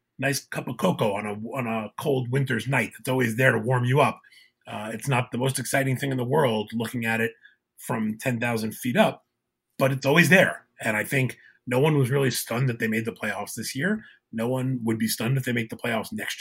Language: English